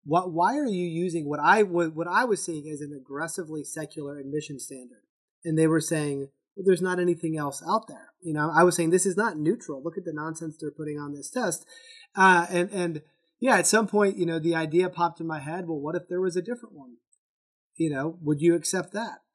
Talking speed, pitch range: 235 wpm, 155-185 Hz